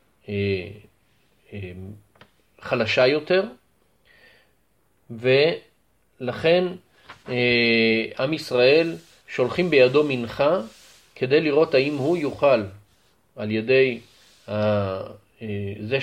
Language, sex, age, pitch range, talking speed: Hebrew, male, 30-49, 110-160 Hz, 60 wpm